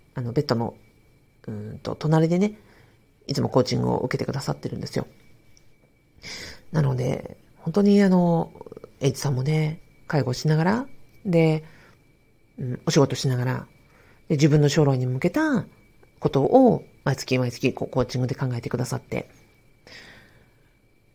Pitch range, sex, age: 130-160 Hz, female, 40-59